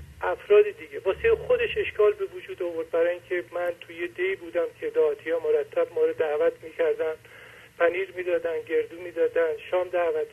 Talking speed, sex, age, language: 165 wpm, male, 50-69, English